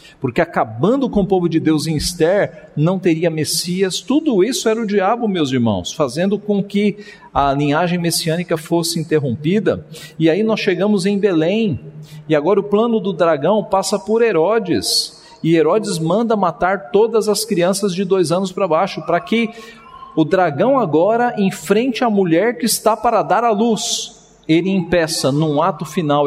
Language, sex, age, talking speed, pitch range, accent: Portuguese, male, 50-69, 165 wpm, 135-200 Hz, Brazilian